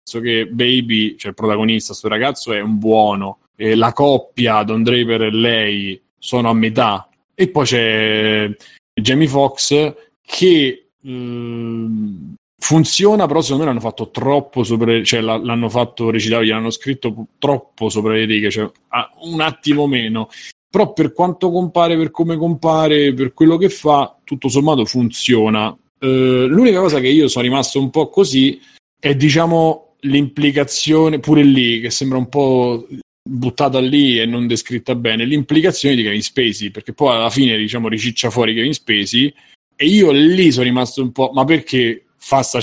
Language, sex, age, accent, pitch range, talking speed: Italian, male, 20-39, native, 110-140 Hz, 160 wpm